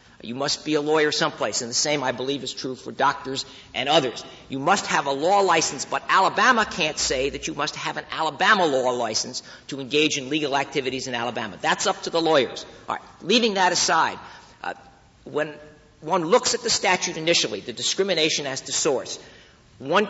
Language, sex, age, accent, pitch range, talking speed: English, male, 50-69, American, 135-185 Hz, 195 wpm